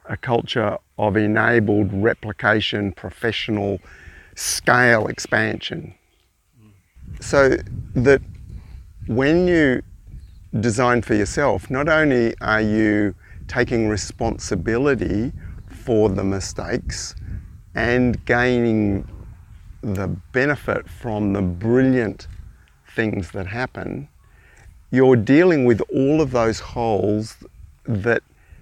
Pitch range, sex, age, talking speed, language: 95-120 Hz, male, 50-69, 90 wpm, English